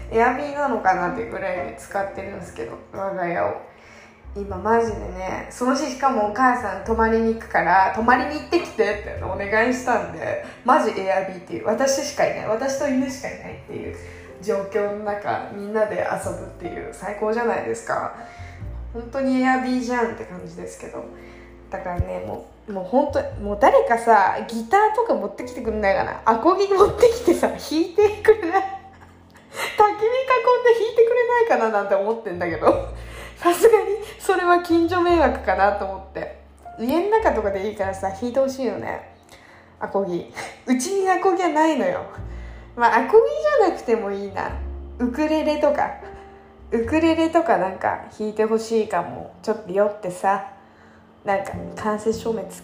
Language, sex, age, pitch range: Japanese, female, 20-39, 200-300 Hz